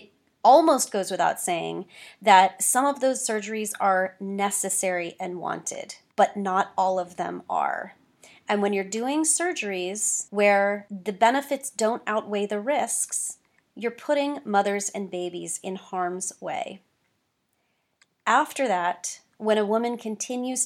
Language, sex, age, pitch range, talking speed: English, female, 30-49, 190-225 Hz, 130 wpm